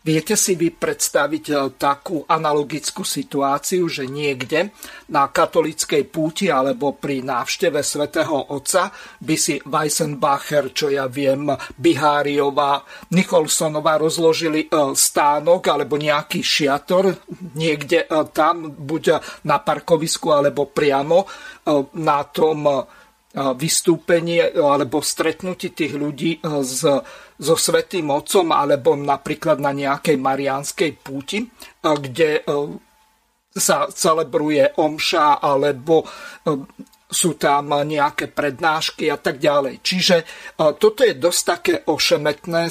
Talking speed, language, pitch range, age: 100 wpm, Slovak, 145-190 Hz, 50-69